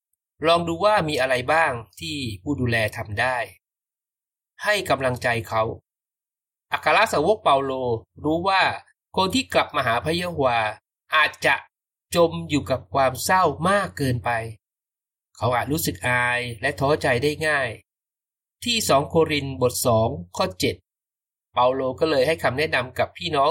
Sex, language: male, Thai